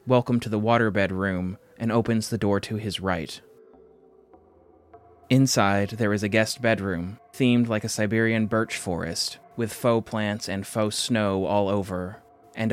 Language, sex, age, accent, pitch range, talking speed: English, male, 20-39, American, 100-115 Hz, 155 wpm